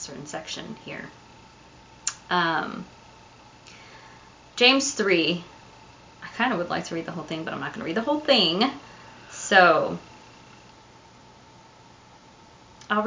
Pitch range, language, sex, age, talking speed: 170-220 Hz, English, female, 20-39, 125 wpm